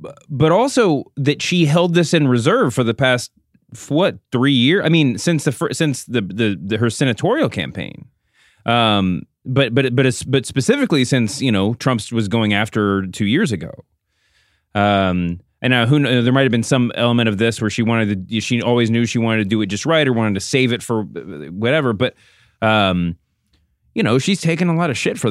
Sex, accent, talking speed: male, American, 215 wpm